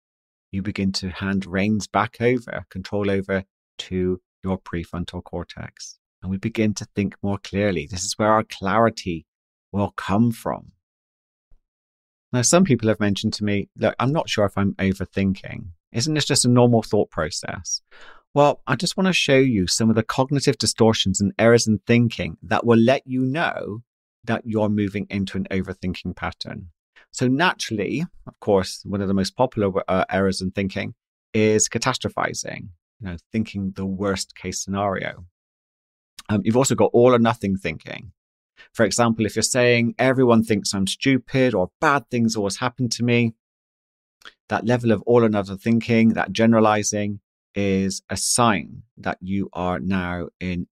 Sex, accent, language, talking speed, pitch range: male, British, English, 165 wpm, 95-115 Hz